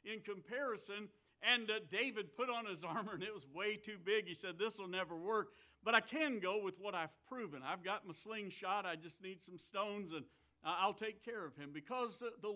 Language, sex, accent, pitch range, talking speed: English, male, American, 160-215 Hz, 225 wpm